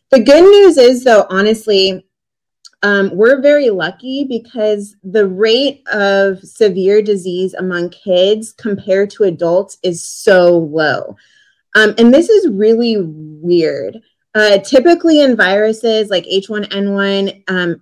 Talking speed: 125 wpm